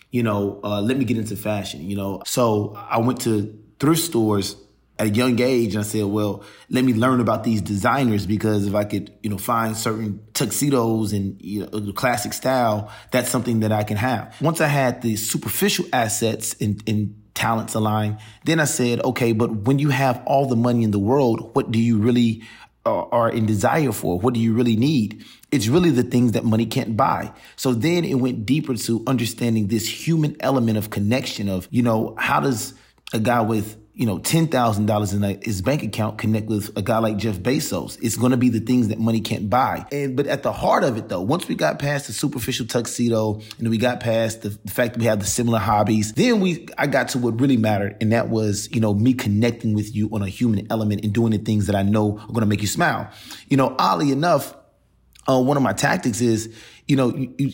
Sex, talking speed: male, 225 wpm